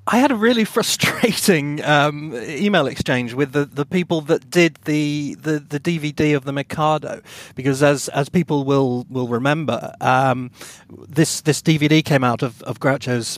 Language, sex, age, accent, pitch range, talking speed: English, male, 40-59, British, 140-195 Hz, 165 wpm